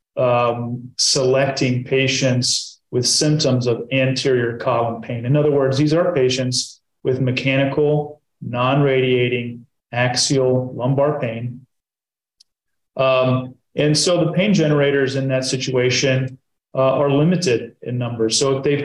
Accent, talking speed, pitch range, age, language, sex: American, 120 wpm, 120-135 Hz, 40-59, English, male